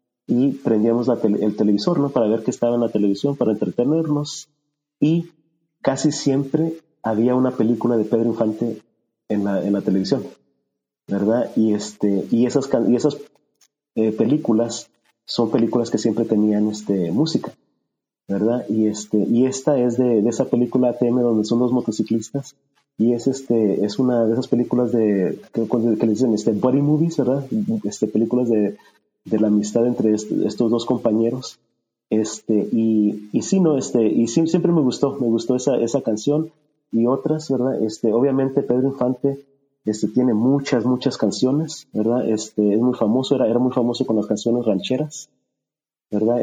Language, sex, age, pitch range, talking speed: Spanish, male, 40-59, 110-135 Hz, 170 wpm